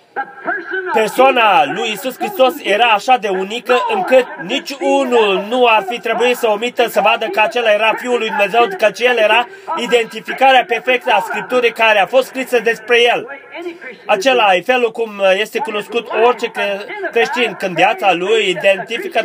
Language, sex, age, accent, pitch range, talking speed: Romanian, male, 30-49, native, 200-265 Hz, 155 wpm